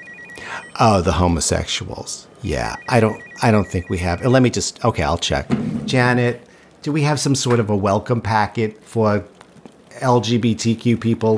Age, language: 50-69, English